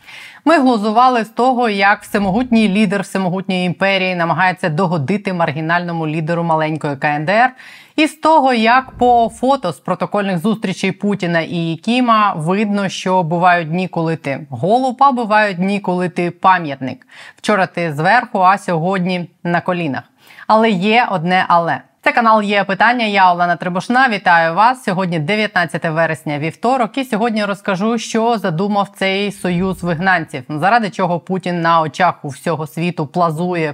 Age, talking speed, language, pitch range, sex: 20-39, 145 wpm, Ukrainian, 165-215 Hz, female